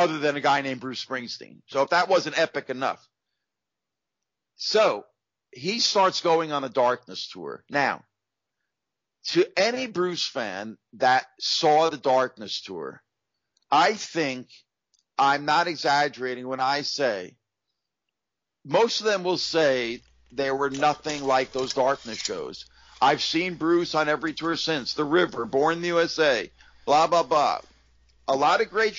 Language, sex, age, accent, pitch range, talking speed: English, male, 50-69, American, 125-175 Hz, 145 wpm